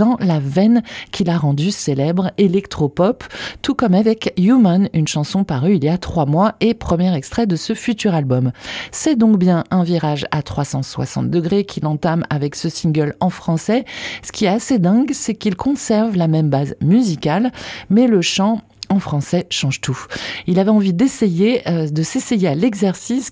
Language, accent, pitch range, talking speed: French, French, 155-220 Hz, 180 wpm